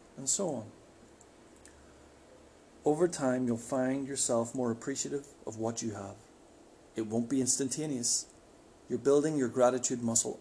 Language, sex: English, male